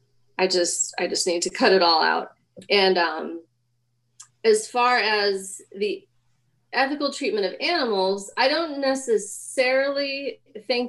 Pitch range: 165-220 Hz